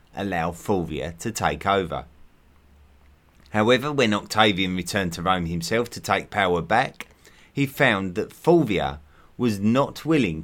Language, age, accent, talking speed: English, 30-49, British, 130 wpm